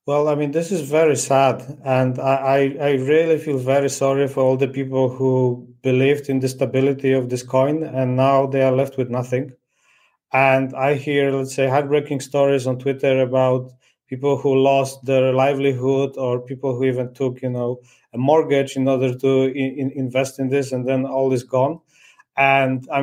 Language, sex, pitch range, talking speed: English, male, 130-145 Hz, 190 wpm